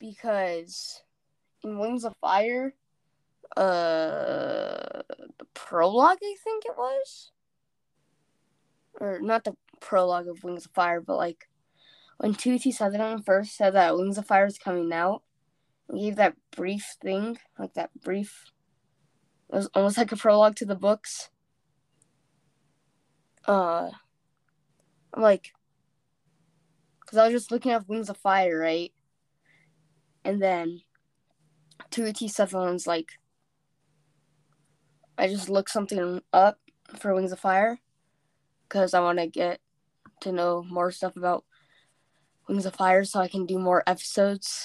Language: English